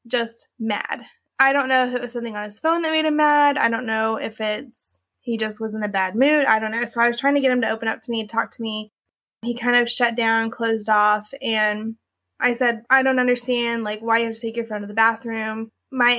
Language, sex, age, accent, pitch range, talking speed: English, female, 20-39, American, 225-255 Hz, 265 wpm